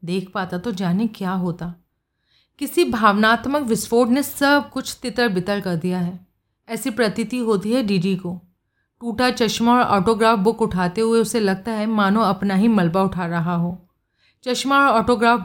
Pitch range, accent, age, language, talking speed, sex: 185-245 Hz, native, 30-49, Hindi, 165 wpm, female